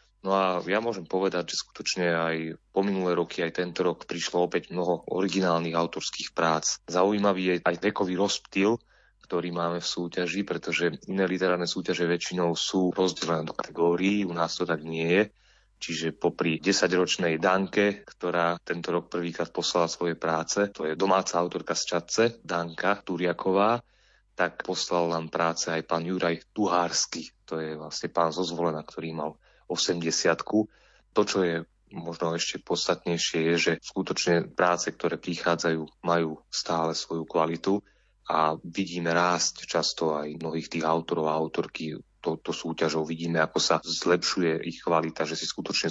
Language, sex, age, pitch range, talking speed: Slovak, male, 30-49, 80-95 Hz, 150 wpm